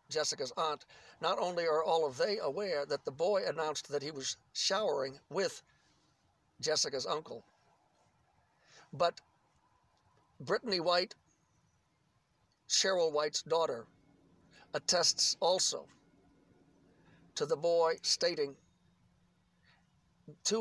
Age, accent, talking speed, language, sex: 60-79, American, 95 wpm, English, male